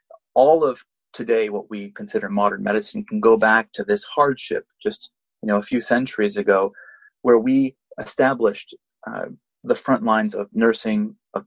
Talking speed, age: 160 wpm, 30-49